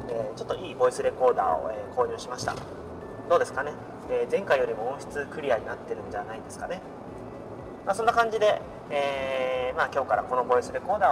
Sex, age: male, 30-49